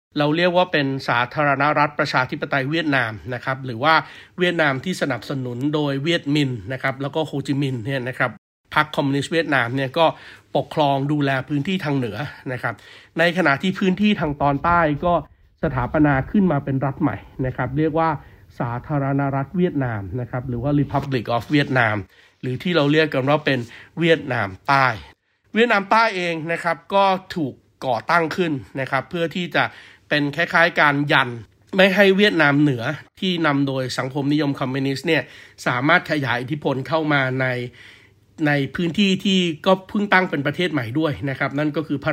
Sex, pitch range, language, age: male, 130-160 Hz, Thai, 60-79